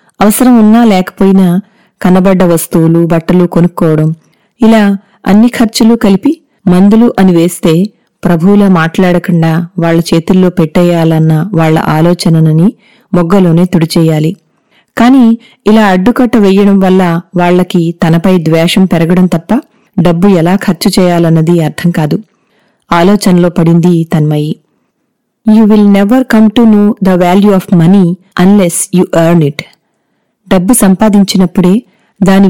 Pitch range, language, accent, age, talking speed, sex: 175-215 Hz, Telugu, native, 30-49, 110 wpm, female